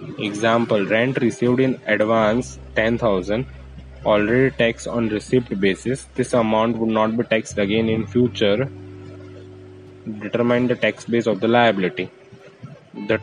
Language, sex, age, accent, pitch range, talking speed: Hindi, male, 10-29, native, 110-125 Hz, 70 wpm